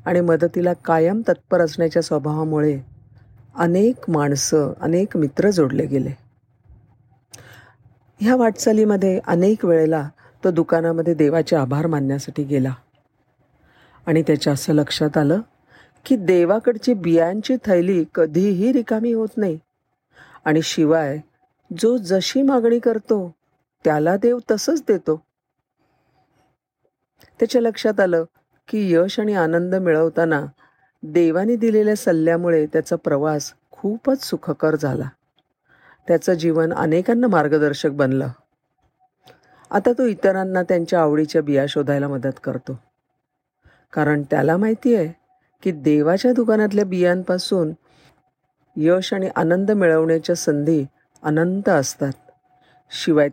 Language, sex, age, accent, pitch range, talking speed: Marathi, female, 40-59, native, 150-195 Hz, 100 wpm